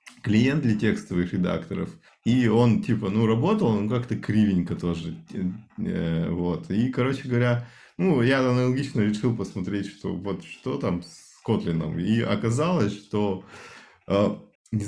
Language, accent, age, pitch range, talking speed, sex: Russian, native, 20-39, 90-115 Hz, 130 wpm, male